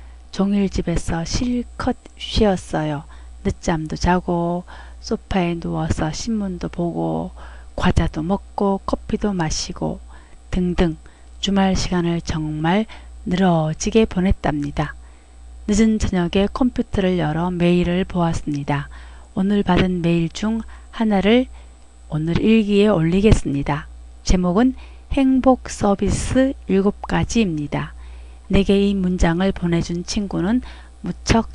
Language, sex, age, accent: Korean, female, 40-59, native